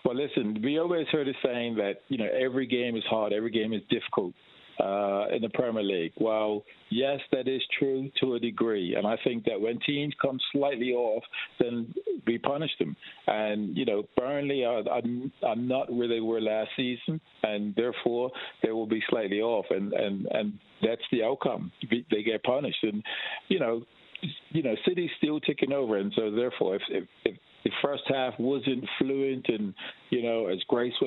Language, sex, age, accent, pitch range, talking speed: English, male, 50-69, American, 105-130 Hz, 185 wpm